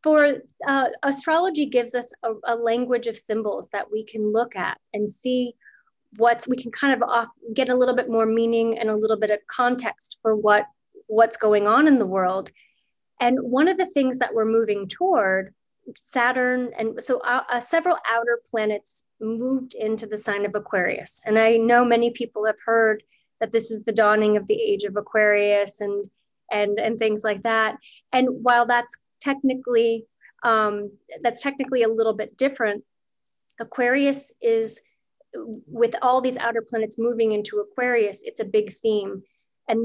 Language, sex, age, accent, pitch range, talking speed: English, female, 30-49, American, 215-245 Hz, 175 wpm